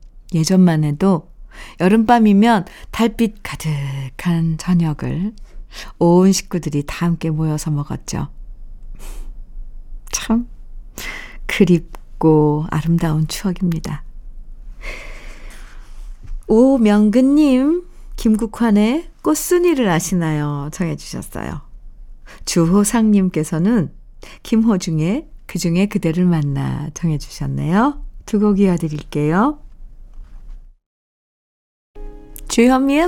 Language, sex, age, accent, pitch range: Korean, female, 50-69, native, 160-235 Hz